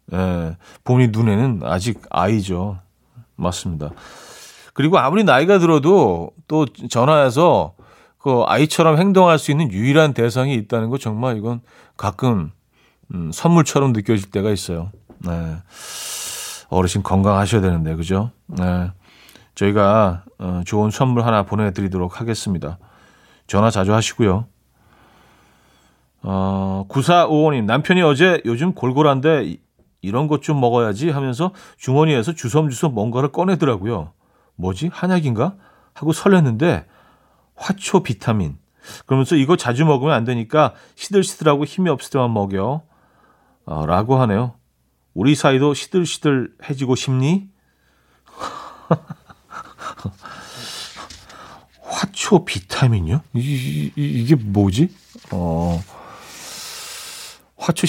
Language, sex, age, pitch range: Korean, male, 40-59, 95-155 Hz